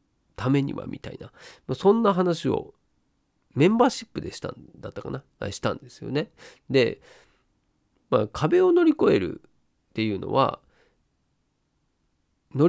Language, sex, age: Japanese, male, 40-59